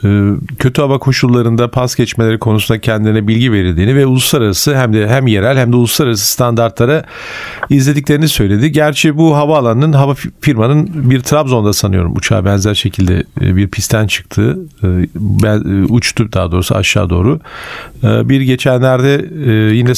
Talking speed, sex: 130 wpm, male